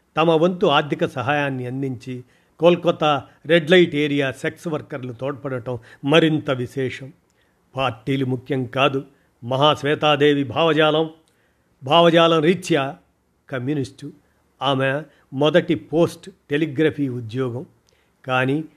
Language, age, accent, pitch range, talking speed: Telugu, 50-69, native, 130-155 Hz, 95 wpm